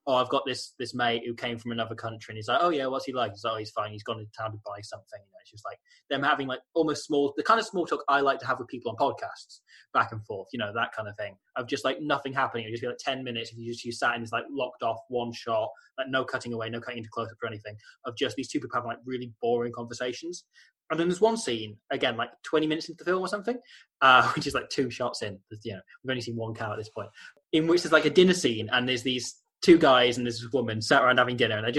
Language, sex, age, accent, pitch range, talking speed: English, male, 20-39, British, 115-150 Hz, 300 wpm